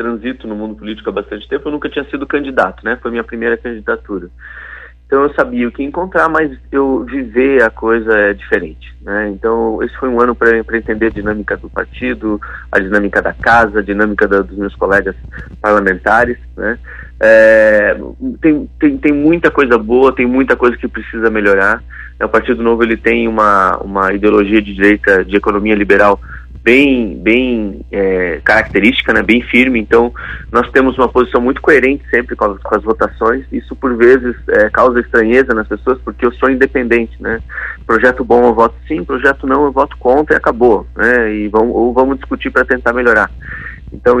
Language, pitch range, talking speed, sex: Portuguese, 105-130 Hz, 185 wpm, male